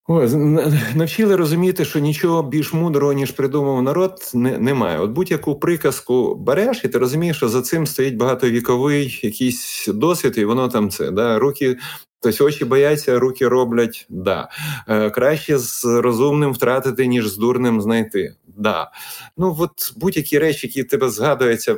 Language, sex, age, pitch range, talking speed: Ukrainian, male, 30-49, 120-165 Hz, 150 wpm